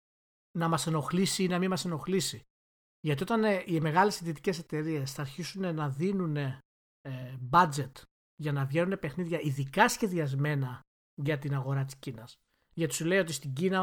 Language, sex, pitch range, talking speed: Greek, male, 140-175 Hz, 155 wpm